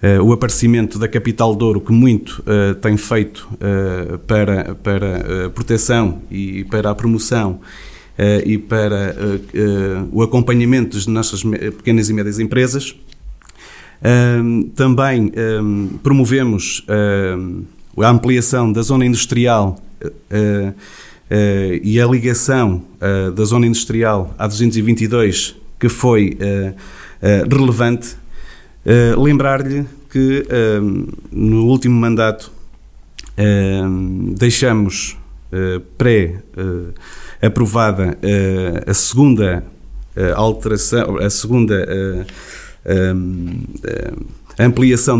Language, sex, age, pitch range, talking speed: Portuguese, male, 30-49, 100-120 Hz, 95 wpm